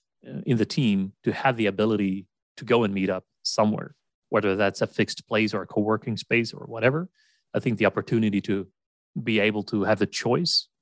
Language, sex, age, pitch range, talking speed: English, male, 30-49, 105-130 Hz, 195 wpm